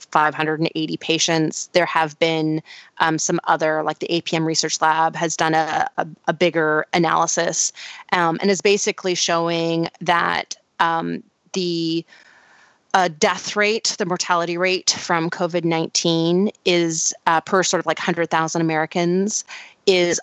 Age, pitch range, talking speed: 30-49, 160-185 Hz, 135 wpm